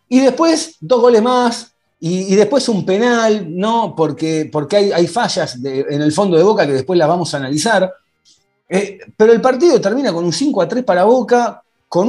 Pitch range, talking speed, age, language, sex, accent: 150-230 Hz, 205 wpm, 40-59, Spanish, male, Argentinian